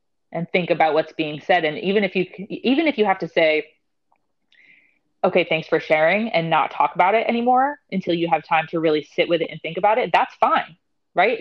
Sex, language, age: female, English, 20-39